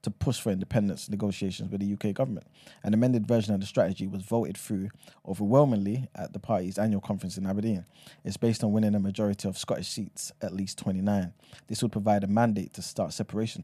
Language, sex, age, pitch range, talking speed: English, male, 20-39, 95-115 Hz, 200 wpm